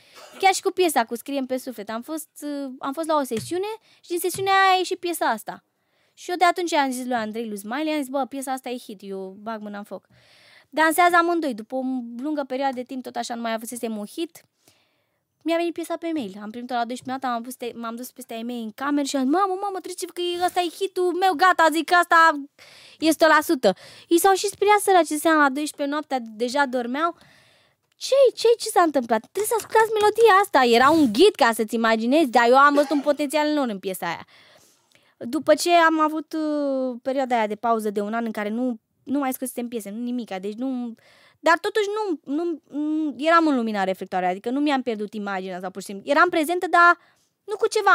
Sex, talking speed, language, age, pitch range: female, 225 wpm, Romanian, 20-39, 235-340 Hz